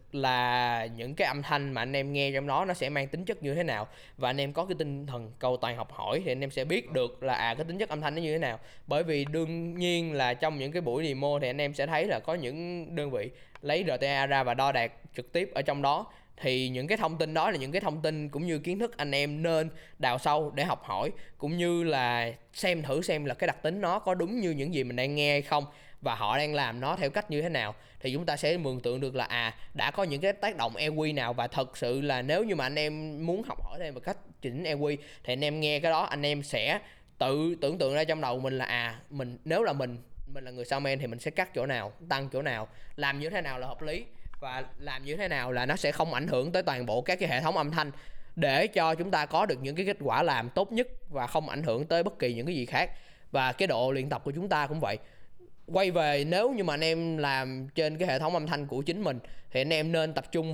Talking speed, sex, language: 285 wpm, male, Vietnamese